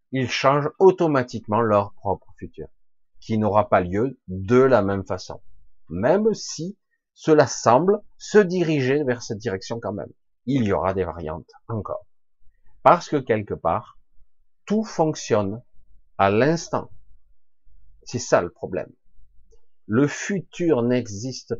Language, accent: French, French